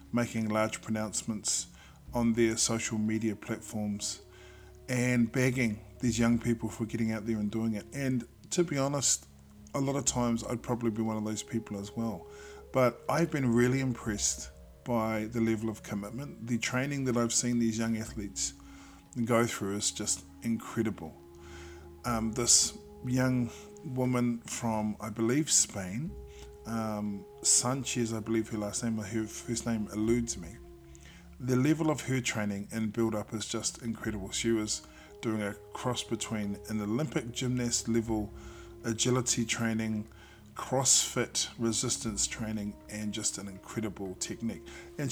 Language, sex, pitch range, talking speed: English, male, 105-120 Hz, 150 wpm